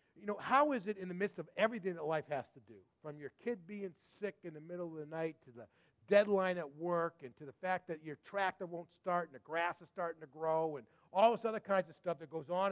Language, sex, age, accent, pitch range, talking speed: English, male, 40-59, American, 150-195 Hz, 270 wpm